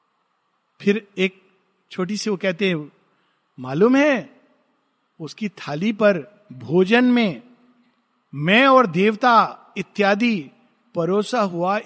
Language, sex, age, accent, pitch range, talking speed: Hindi, male, 50-69, native, 170-235 Hz, 100 wpm